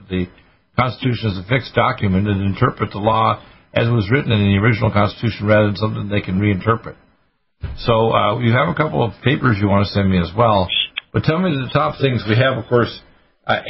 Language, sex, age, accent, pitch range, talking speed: English, male, 50-69, American, 100-125 Hz, 220 wpm